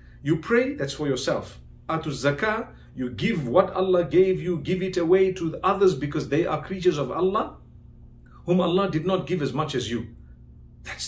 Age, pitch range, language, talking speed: 50-69, 140-195 Hz, English, 190 wpm